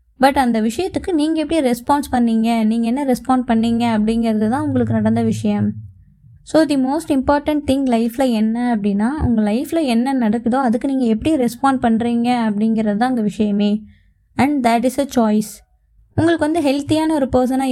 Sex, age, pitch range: female, 20-39, 225-270 Hz